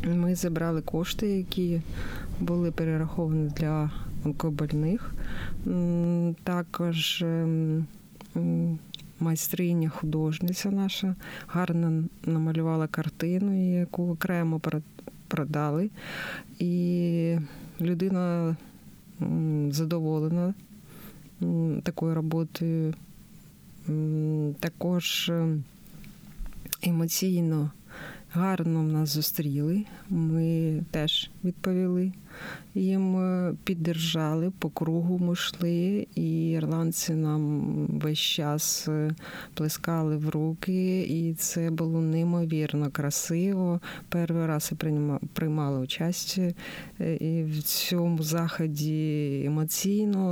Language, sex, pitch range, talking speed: Ukrainian, female, 155-180 Hz, 75 wpm